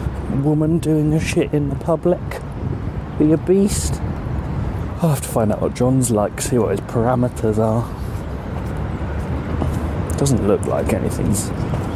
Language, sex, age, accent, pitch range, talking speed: English, male, 30-49, British, 100-150 Hz, 135 wpm